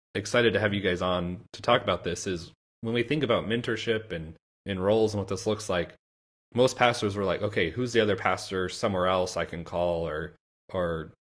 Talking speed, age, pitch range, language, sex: 215 wpm, 30-49, 90-105 Hz, English, male